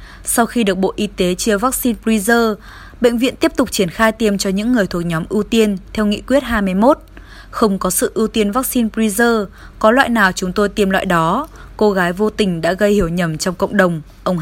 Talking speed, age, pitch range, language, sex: 225 wpm, 20-39, 190-235 Hz, Vietnamese, female